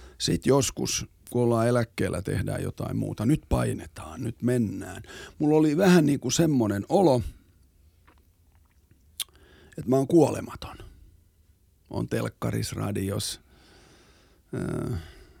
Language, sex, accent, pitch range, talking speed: Finnish, male, native, 90-140 Hz, 100 wpm